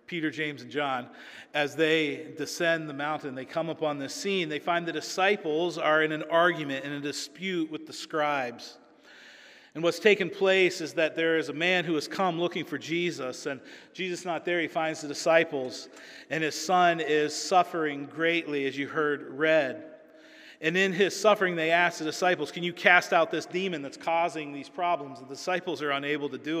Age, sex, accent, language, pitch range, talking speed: 40-59, male, American, English, 150-175 Hz, 195 wpm